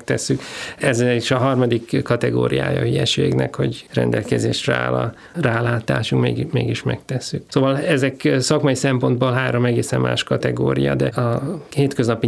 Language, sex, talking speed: Hungarian, male, 120 wpm